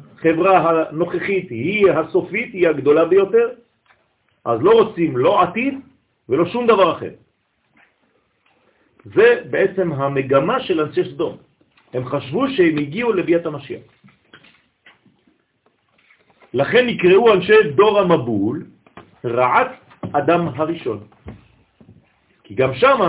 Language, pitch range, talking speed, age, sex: French, 130-185 Hz, 95 wpm, 50-69, male